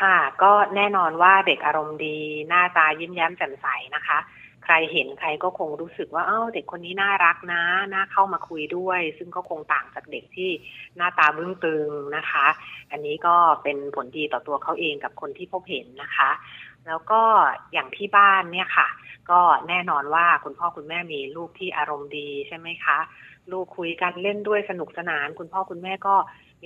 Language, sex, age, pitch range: Thai, female, 30-49, 155-190 Hz